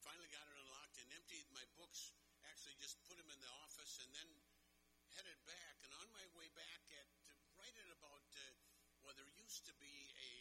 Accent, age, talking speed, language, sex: American, 50-69, 180 wpm, English, male